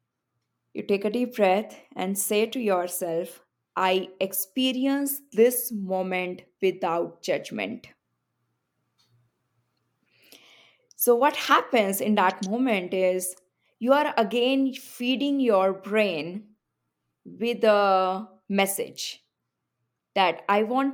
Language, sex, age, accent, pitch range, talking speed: English, female, 20-39, Indian, 185-235 Hz, 95 wpm